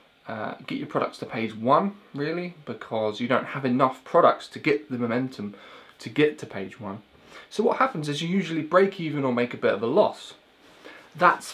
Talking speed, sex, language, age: 205 wpm, male, English, 20-39